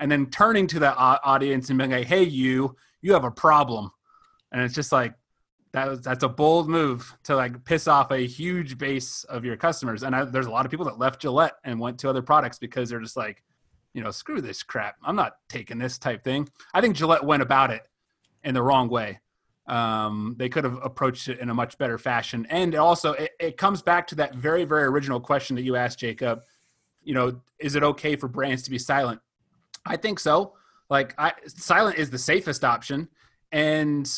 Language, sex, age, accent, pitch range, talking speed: English, male, 30-49, American, 125-155 Hz, 210 wpm